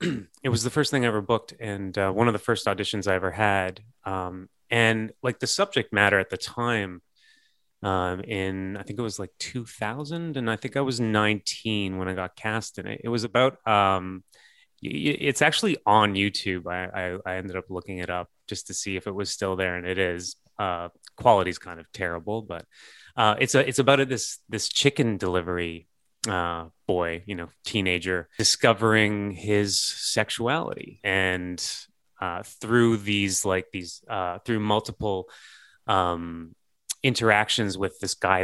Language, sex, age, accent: English, male, 30-49, American